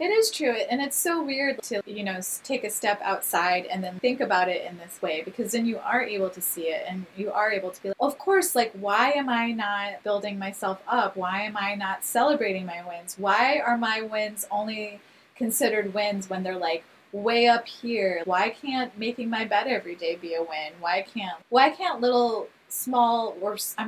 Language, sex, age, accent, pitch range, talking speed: English, female, 20-39, American, 190-235 Hz, 215 wpm